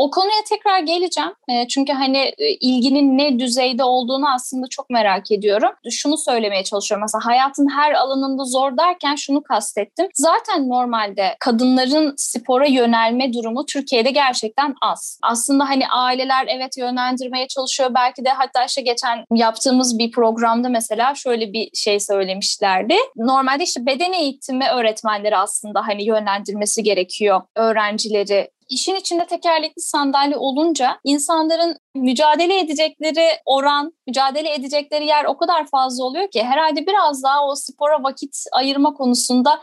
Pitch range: 225-300 Hz